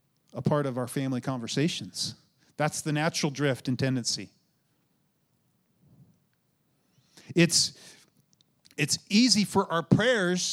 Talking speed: 105 wpm